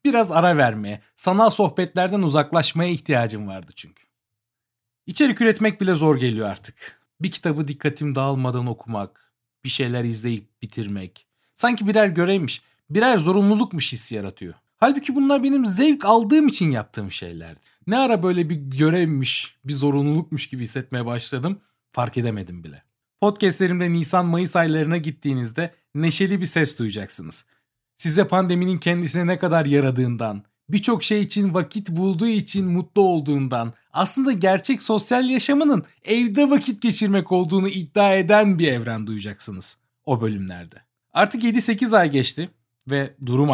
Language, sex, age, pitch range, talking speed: Turkish, male, 40-59, 120-195 Hz, 130 wpm